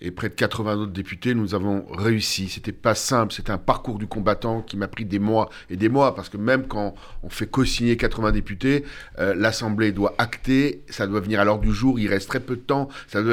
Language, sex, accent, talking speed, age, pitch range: French, male, French, 245 wpm, 50-69, 105-140 Hz